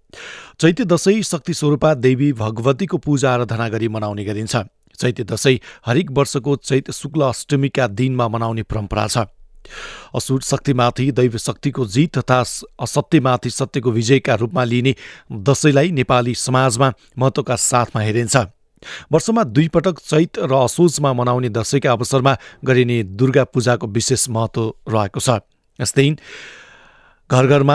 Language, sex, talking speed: English, male, 110 wpm